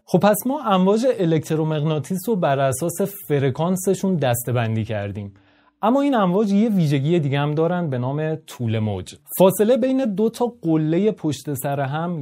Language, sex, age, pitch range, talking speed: Persian, male, 30-49, 125-170 Hz, 150 wpm